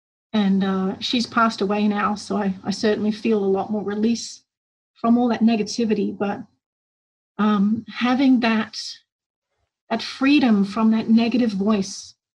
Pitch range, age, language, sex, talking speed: 210-245 Hz, 40-59, English, female, 140 wpm